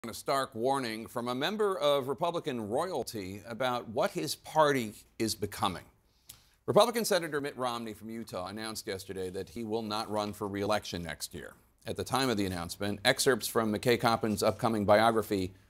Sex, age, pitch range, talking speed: male, 40-59, 100-135 Hz, 170 wpm